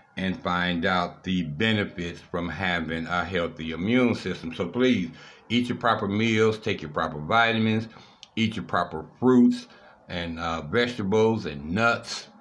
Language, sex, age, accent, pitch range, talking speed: English, male, 60-79, American, 90-115 Hz, 145 wpm